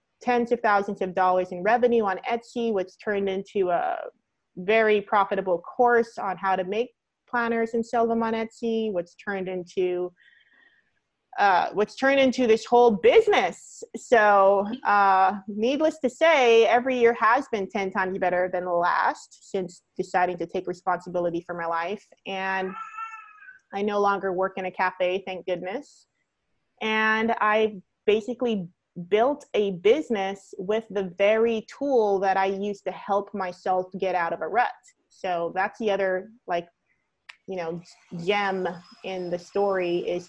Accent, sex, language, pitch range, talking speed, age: American, female, English, 190-240 Hz, 150 wpm, 30-49